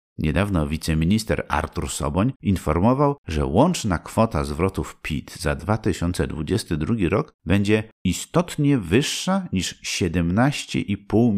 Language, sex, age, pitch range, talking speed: Polish, male, 50-69, 80-125 Hz, 95 wpm